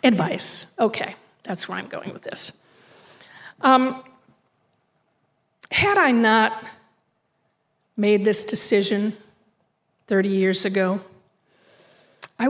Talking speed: 90 wpm